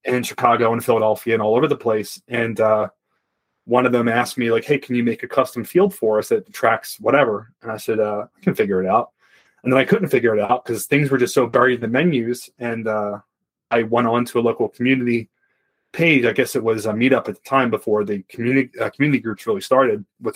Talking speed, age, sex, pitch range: 240 wpm, 30-49, male, 110-125 Hz